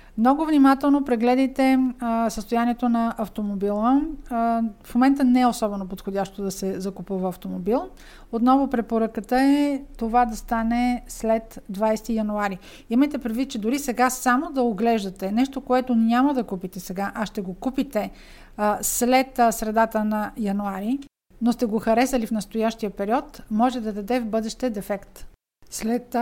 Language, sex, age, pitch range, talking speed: Bulgarian, female, 50-69, 210-255 Hz, 150 wpm